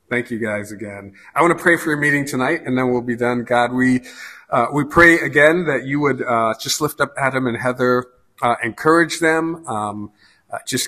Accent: American